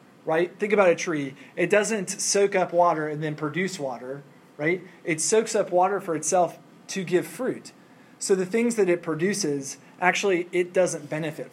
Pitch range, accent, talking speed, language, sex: 150-185 Hz, American, 175 wpm, English, male